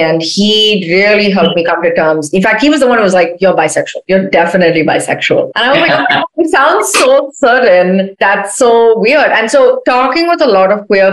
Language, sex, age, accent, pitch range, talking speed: Hindi, female, 30-49, native, 165-210 Hz, 230 wpm